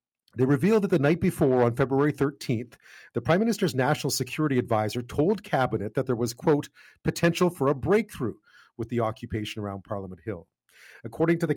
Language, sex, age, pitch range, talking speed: English, male, 40-59, 115-150 Hz, 175 wpm